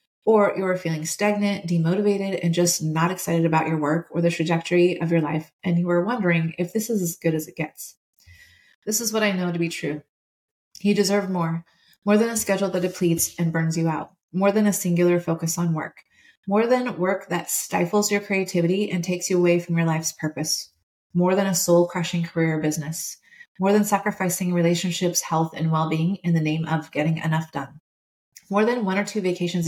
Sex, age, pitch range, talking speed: female, 30-49, 165-200 Hz, 205 wpm